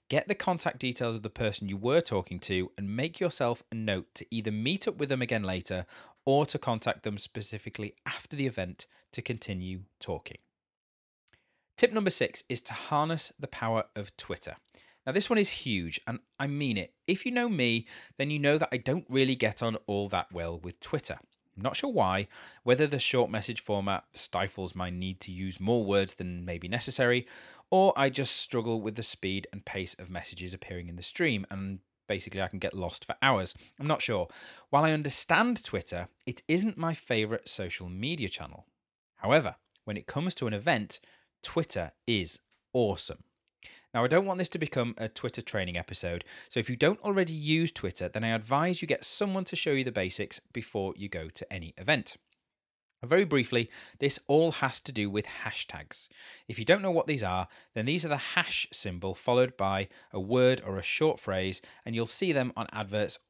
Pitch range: 95-140 Hz